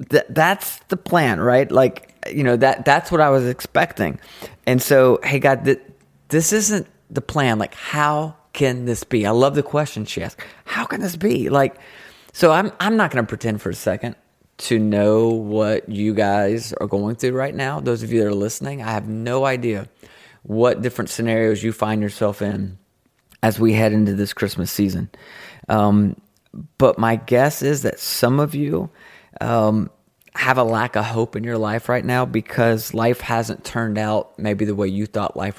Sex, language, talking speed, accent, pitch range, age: male, English, 190 wpm, American, 105-130 Hz, 30-49